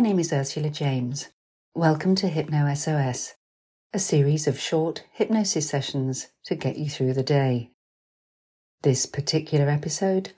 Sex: female